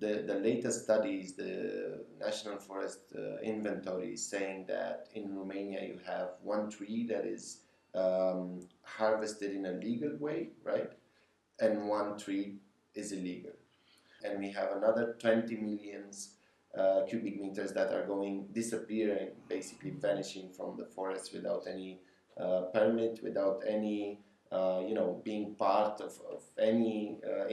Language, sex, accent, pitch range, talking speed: English, male, Italian, 95-110 Hz, 140 wpm